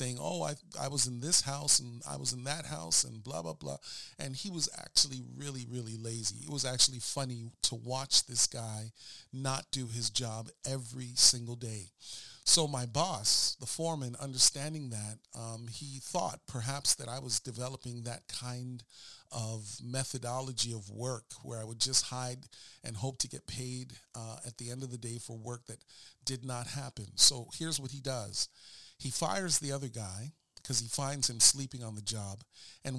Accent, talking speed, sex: American, 185 wpm, male